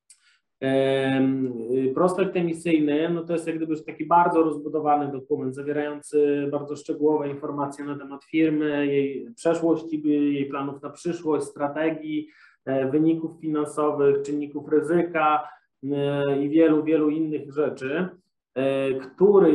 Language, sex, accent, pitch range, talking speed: English, male, Polish, 140-160 Hz, 115 wpm